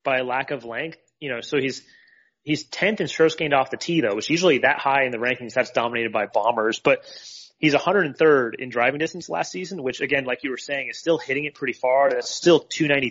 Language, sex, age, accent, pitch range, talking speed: English, male, 30-49, American, 120-145 Hz, 240 wpm